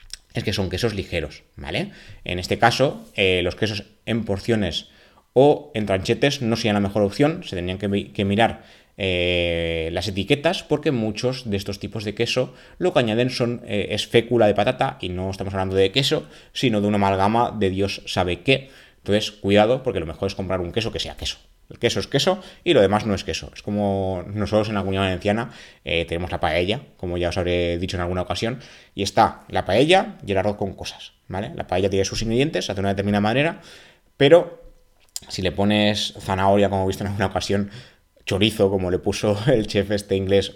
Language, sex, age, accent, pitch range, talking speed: Spanish, male, 20-39, Spanish, 95-115 Hz, 205 wpm